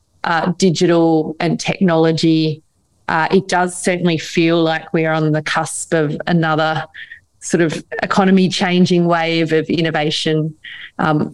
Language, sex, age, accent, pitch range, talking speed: English, female, 30-49, Australian, 165-195 Hz, 125 wpm